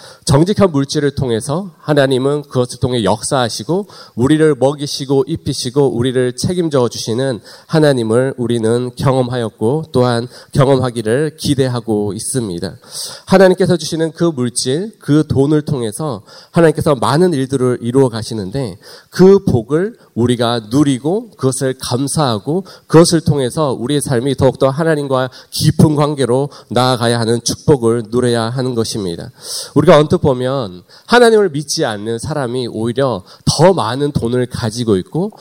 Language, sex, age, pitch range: Korean, male, 30-49, 120-150 Hz